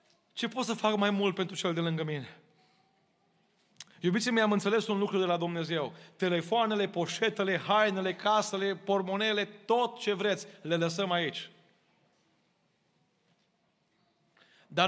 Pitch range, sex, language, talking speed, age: 170-205 Hz, male, Romanian, 130 wpm, 30-49